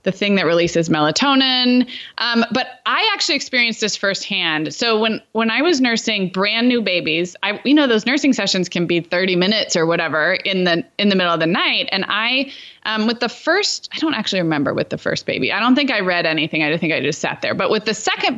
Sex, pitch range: female, 180-245 Hz